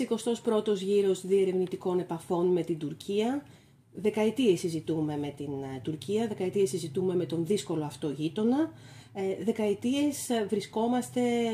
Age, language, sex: 40-59, Greek, female